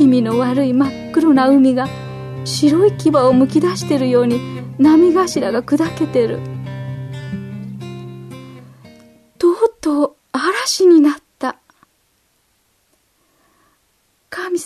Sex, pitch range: female, 200-310 Hz